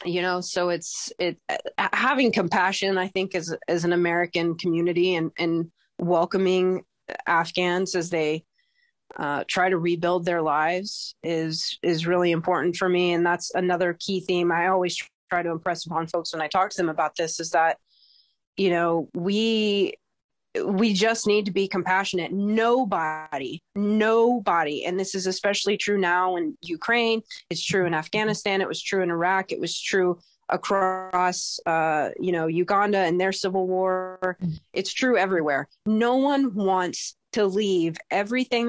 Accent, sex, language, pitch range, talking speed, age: American, female, English, 170-200 Hz, 160 wpm, 20-39